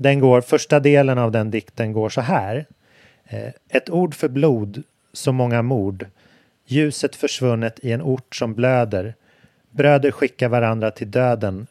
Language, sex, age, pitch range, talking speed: Swedish, male, 30-49, 110-135 Hz, 150 wpm